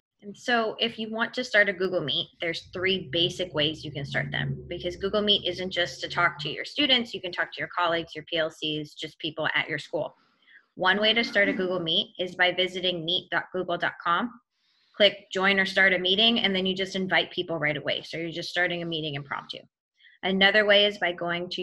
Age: 20-39